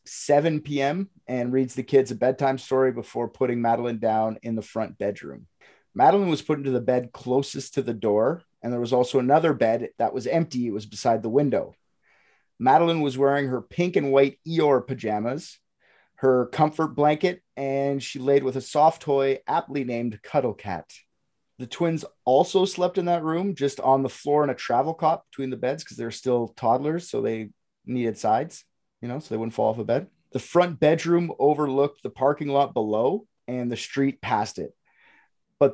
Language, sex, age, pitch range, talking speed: English, male, 30-49, 125-155 Hz, 190 wpm